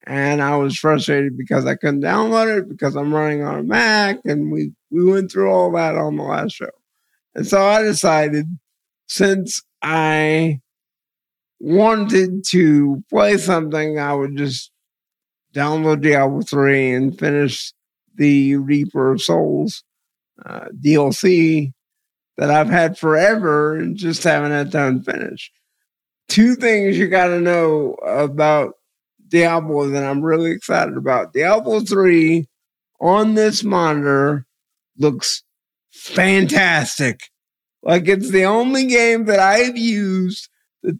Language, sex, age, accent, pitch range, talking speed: English, male, 50-69, American, 150-220 Hz, 130 wpm